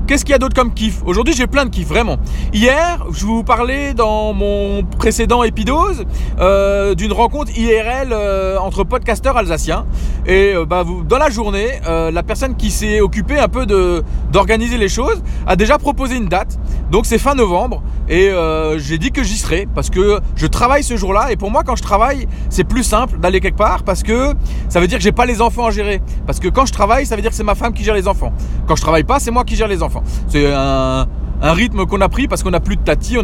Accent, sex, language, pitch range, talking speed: French, male, French, 185-245 Hz, 240 wpm